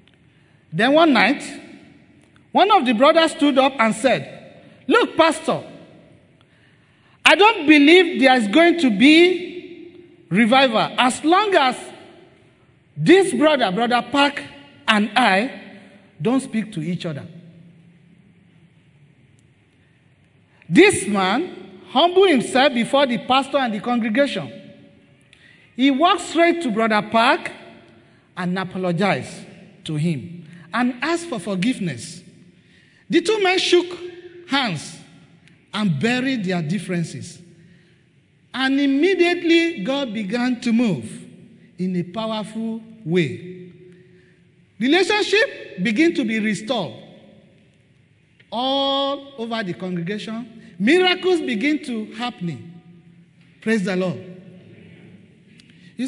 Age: 40-59